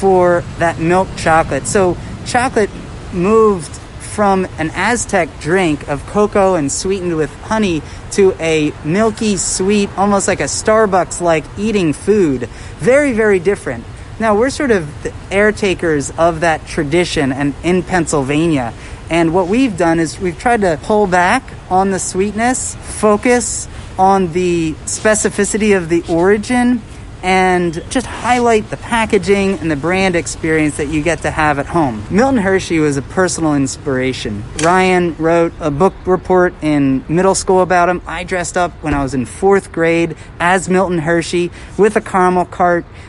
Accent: American